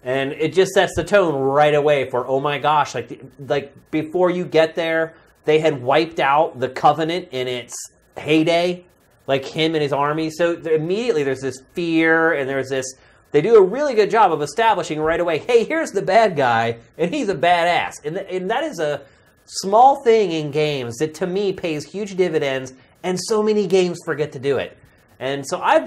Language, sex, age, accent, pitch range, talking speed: English, male, 30-49, American, 135-180 Hz, 200 wpm